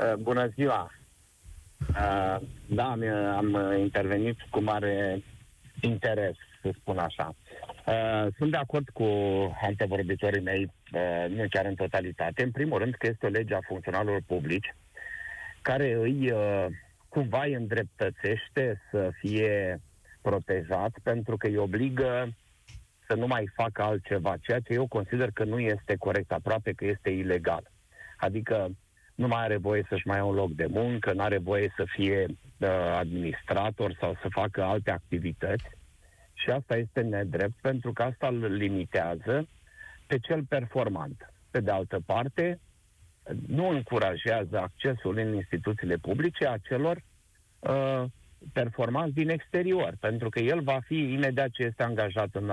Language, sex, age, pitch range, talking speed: Romanian, male, 50-69, 95-125 Hz, 135 wpm